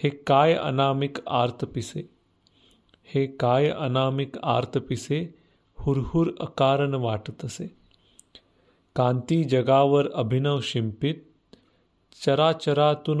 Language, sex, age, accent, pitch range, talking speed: Marathi, male, 40-59, native, 115-145 Hz, 75 wpm